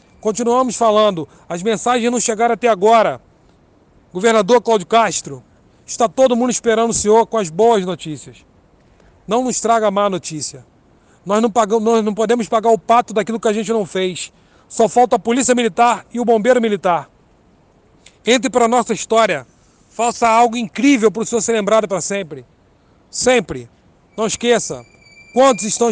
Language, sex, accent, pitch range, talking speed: Portuguese, male, Brazilian, 185-230 Hz, 165 wpm